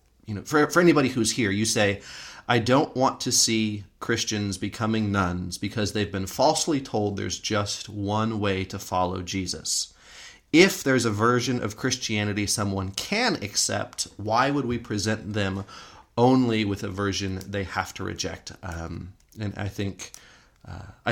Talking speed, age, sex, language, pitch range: 160 wpm, 30-49, male, English, 95-115 Hz